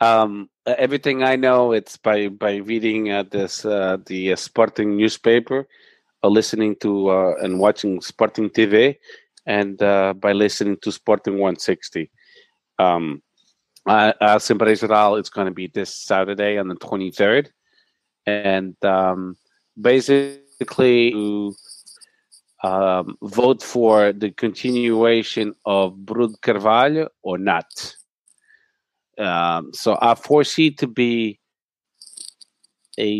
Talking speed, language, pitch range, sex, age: 115 wpm, English, 100-115 Hz, male, 40-59